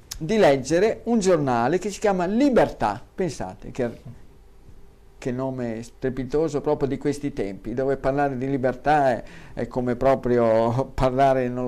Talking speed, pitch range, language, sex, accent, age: 140 wpm, 135-210 Hz, Italian, male, native, 50-69